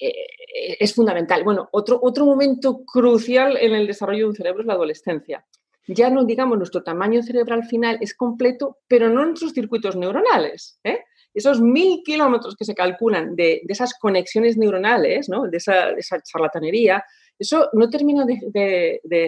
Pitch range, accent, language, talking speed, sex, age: 190-270 Hz, Spanish, Spanish, 170 wpm, female, 40-59